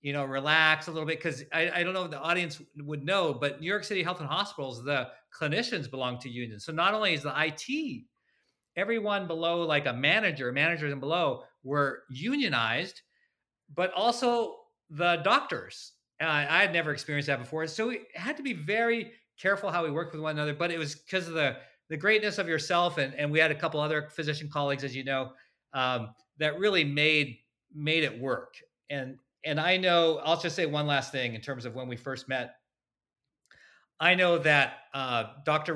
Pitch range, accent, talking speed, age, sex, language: 130-165 Hz, American, 200 wpm, 40-59, male, English